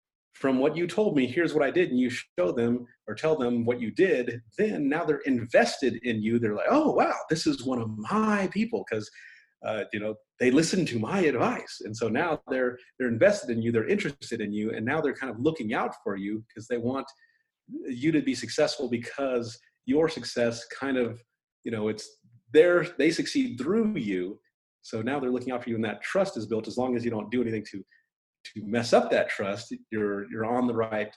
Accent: American